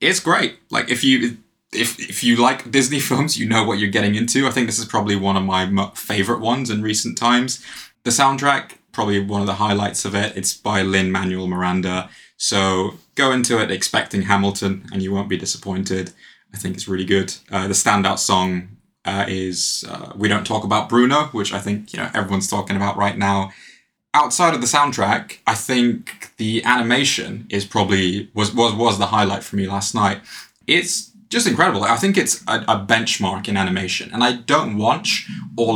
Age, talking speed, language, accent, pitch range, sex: 20-39, 195 wpm, English, British, 95-115 Hz, male